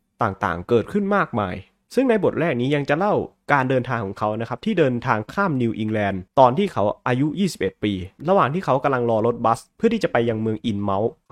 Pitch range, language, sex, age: 115-185 Hz, Thai, male, 20-39